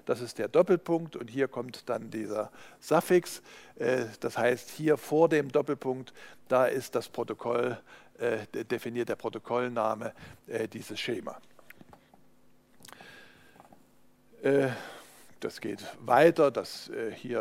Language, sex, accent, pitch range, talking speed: German, male, German, 115-145 Hz, 105 wpm